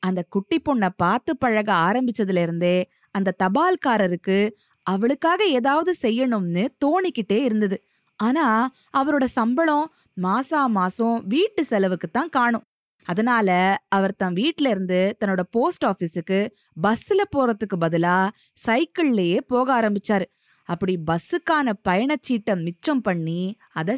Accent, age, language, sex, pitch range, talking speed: native, 20-39, Tamil, female, 190-270 Hz, 80 wpm